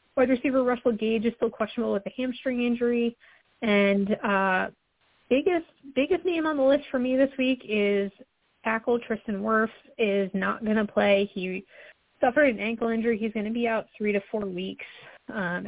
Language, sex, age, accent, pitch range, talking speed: English, female, 20-39, American, 190-255 Hz, 180 wpm